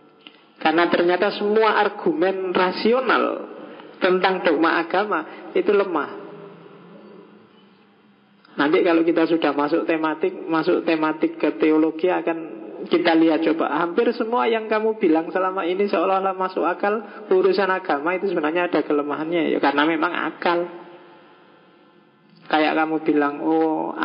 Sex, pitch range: male, 150-180 Hz